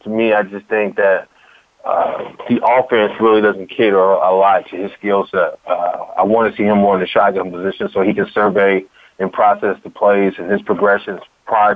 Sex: male